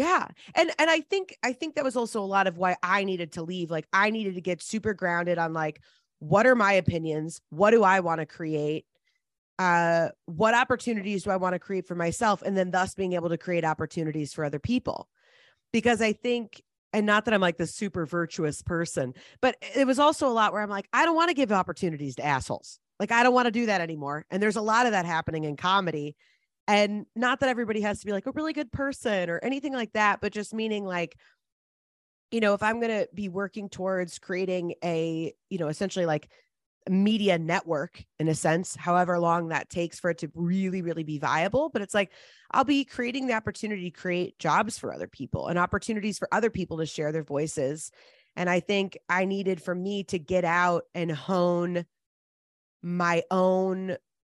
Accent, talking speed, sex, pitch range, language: American, 215 wpm, female, 170-215 Hz, English